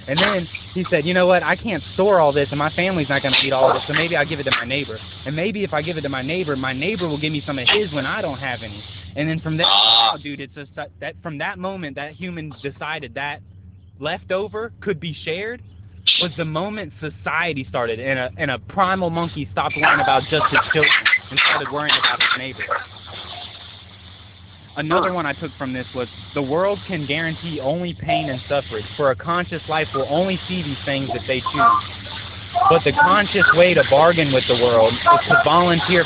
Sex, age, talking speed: male, 20-39, 220 wpm